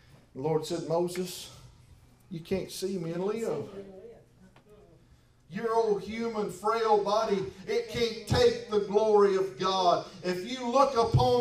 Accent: American